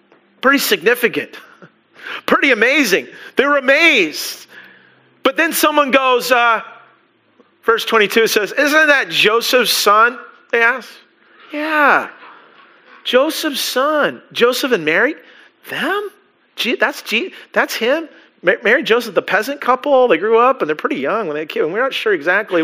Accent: American